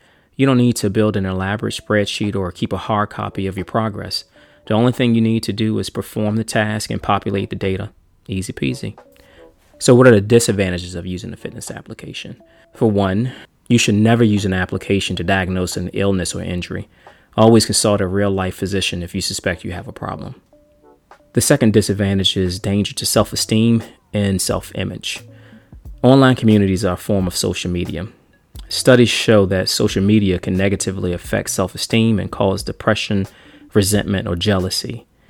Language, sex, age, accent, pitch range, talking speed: English, male, 20-39, American, 95-115 Hz, 175 wpm